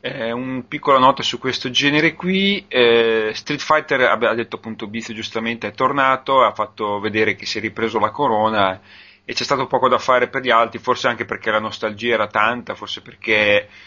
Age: 30-49